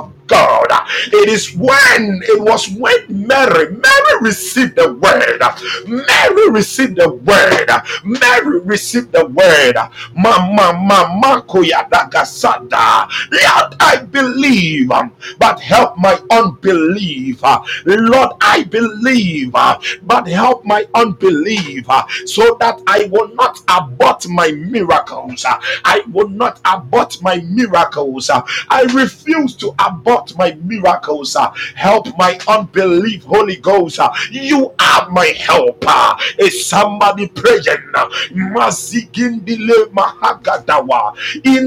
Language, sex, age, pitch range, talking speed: English, male, 50-69, 195-265 Hz, 105 wpm